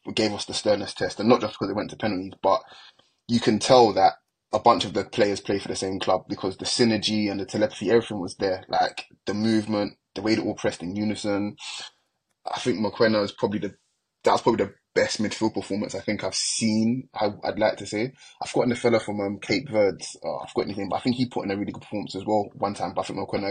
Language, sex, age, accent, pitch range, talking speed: English, male, 20-39, British, 100-115 Hz, 250 wpm